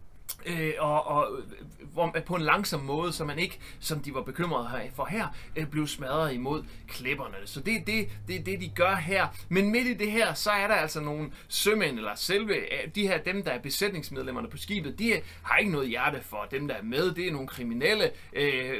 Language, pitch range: Danish, 135-180 Hz